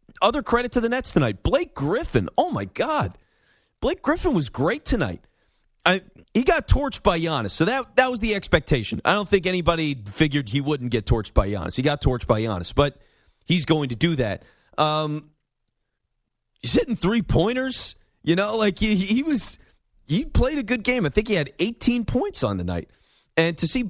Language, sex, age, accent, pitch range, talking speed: English, male, 30-49, American, 140-190 Hz, 195 wpm